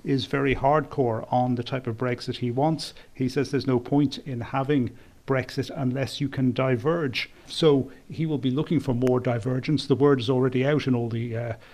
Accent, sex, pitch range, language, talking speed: British, male, 125-140 Hz, English, 200 wpm